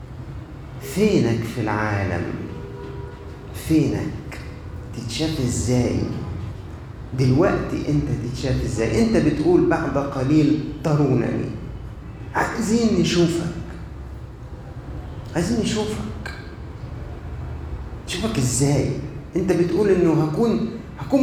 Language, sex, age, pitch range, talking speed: Arabic, male, 40-59, 115-160 Hz, 75 wpm